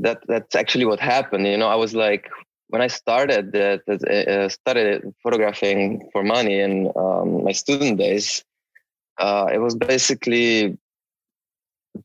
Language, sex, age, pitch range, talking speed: English, male, 20-39, 100-120 Hz, 145 wpm